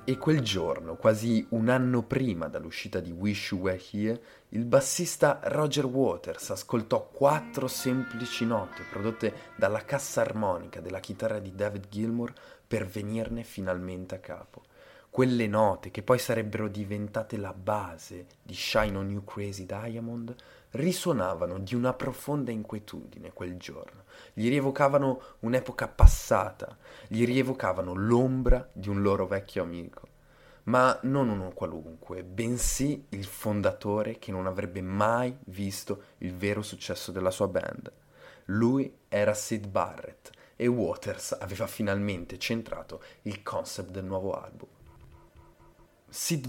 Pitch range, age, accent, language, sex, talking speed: 100-130 Hz, 30-49, native, Italian, male, 130 wpm